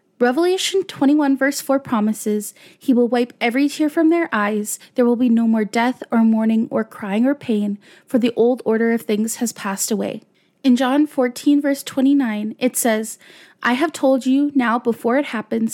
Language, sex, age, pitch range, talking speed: English, female, 20-39, 230-290 Hz, 185 wpm